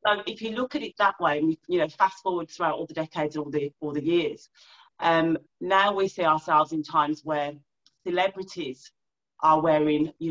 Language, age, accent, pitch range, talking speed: English, 40-59, British, 155-180 Hz, 200 wpm